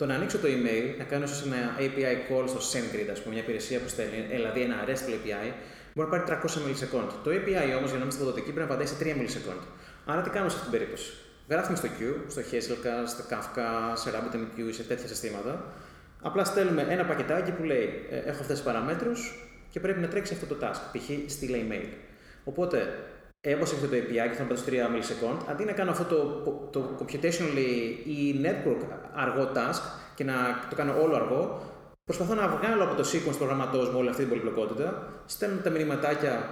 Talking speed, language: 205 wpm, Greek